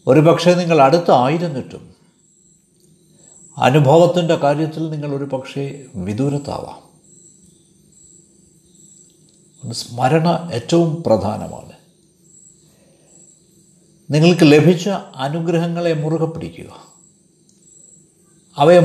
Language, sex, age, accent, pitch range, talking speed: Malayalam, male, 60-79, native, 155-175 Hz, 55 wpm